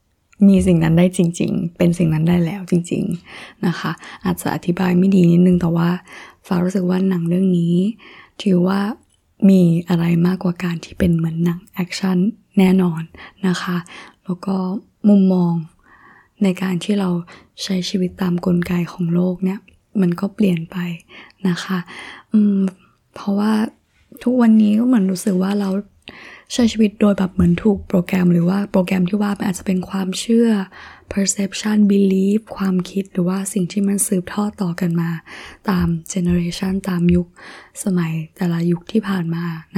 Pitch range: 175-200 Hz